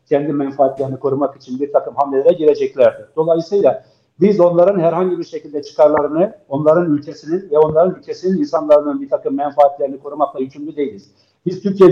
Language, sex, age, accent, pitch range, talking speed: Turkish, male, 50-69, native, 145-180 Hz, 145 wpm